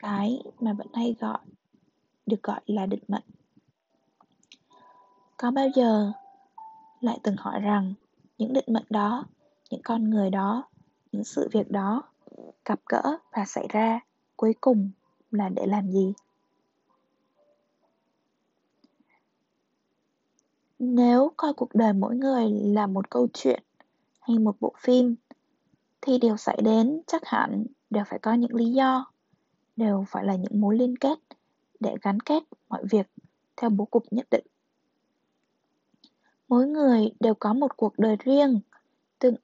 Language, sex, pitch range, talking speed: Vietnamese, female, 215-265 Hz, 140 wpm